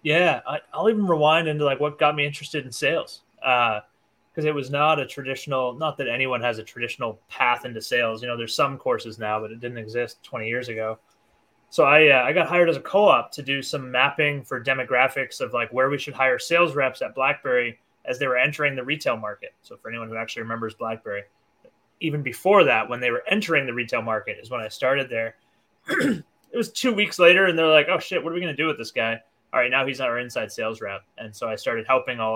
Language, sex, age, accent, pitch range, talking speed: English, male, 20-39, American, 115-150 Hz, 240 wpm